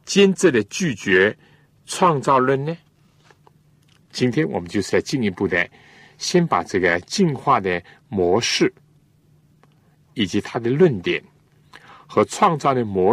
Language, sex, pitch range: Chinese, male, 120-155 Hz